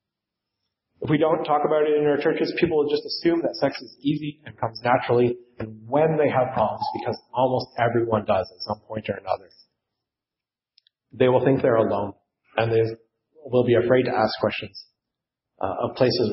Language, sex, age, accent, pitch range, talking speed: English, male, 30-49, American, 110-145 Hz, 185 wpm